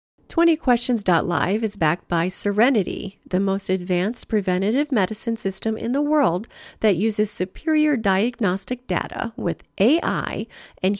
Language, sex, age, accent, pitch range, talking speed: English, female, 40-59, American, 180-240 Hz, 120 wpm